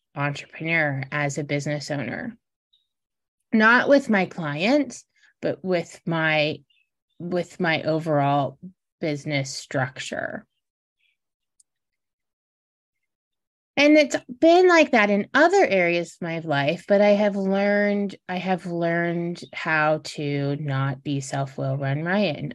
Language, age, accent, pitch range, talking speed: English, 20-39, American, 145-200 Hz, 115 wpm